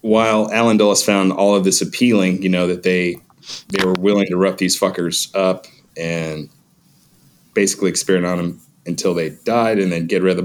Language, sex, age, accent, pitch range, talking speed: English, male, 30-49, American, 90-110 Hz, 195 wpm